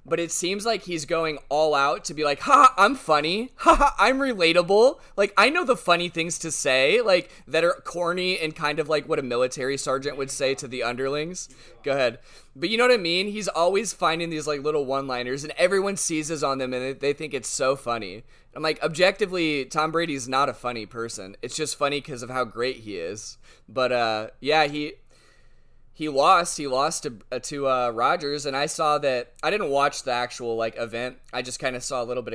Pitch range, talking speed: 120-155 Hz, 220 wpm